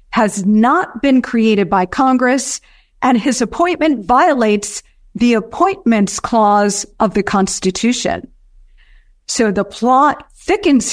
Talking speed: 110 wpm